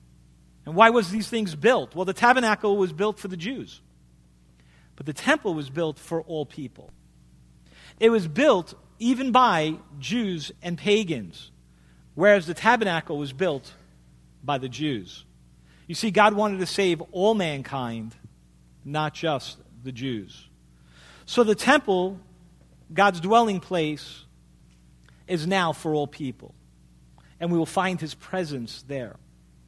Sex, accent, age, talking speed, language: male, American, 40-59, 140 wpm, English